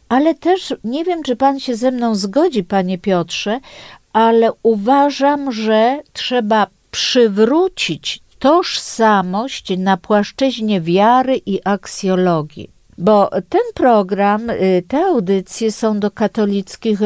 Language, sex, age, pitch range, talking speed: Polish, female, 50-69, 195-255 Hz, 110 wpm